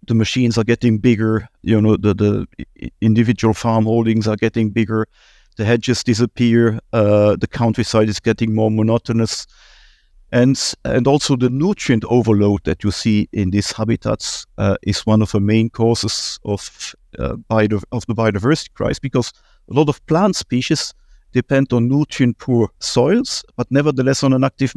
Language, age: English, 50-69